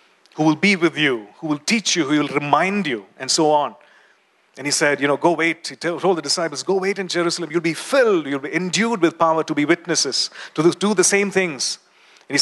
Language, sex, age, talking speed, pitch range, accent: English, male, 40-59, 235 wpm, 150-200 Hz, Indian